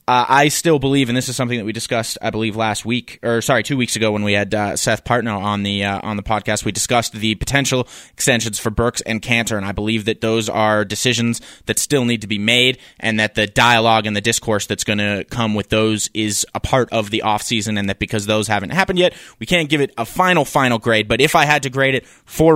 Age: 20-39